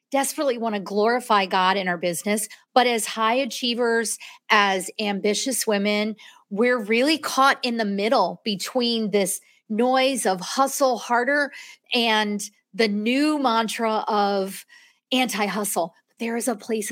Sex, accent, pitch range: female, American, 195-240 Hz